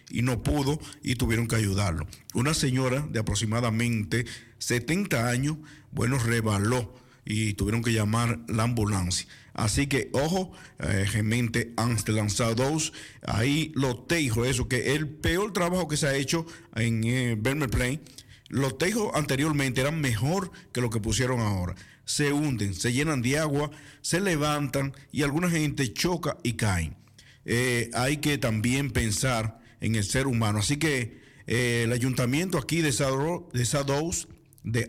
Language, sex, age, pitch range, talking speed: Dutch, male, 50-69, 115-140 Hz, 150 wpm